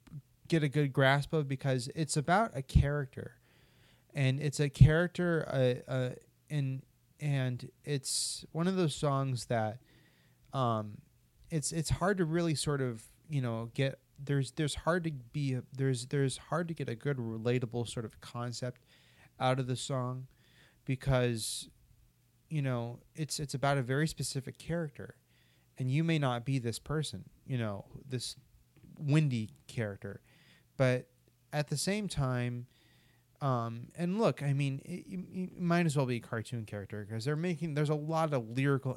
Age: 30-49